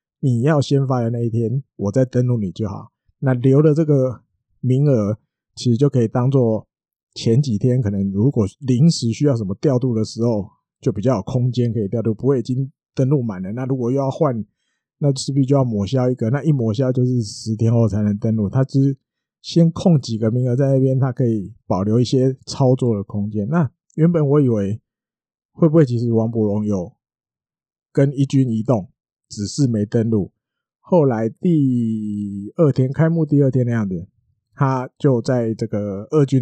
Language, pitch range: Chinese, 110-135 Hz